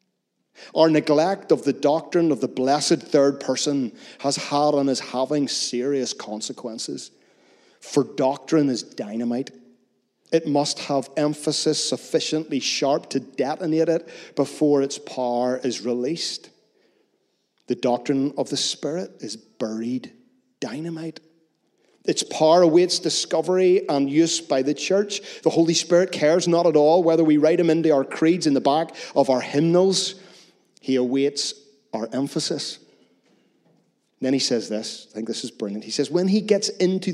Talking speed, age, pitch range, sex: 145 wpm, 40-59, 125-165 Hz, male